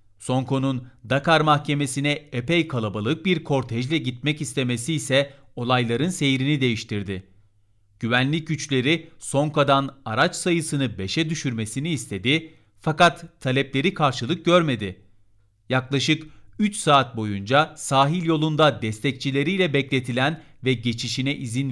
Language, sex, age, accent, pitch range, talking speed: Turkish, male, 40-59, native, 115-155 Hz, 100 wpm